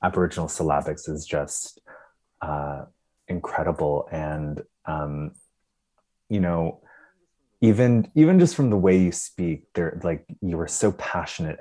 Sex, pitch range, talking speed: male, 75-100 Hz, 125 wpm